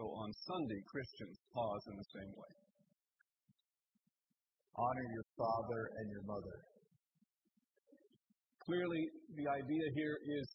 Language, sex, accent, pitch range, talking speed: English, female, American, 125-160 Hz, 115 wpm